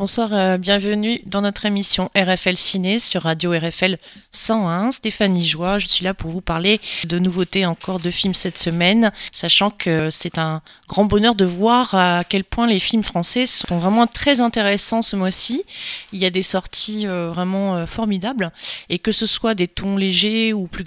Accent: French